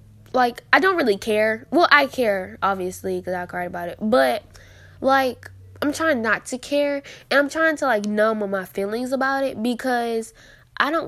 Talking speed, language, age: 185 wpm, English, 10-29